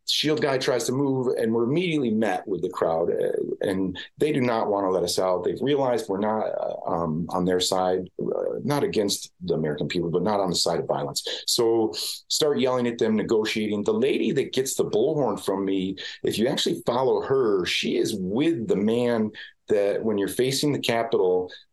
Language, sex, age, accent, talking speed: English, male, 40-59, American, 200 wpm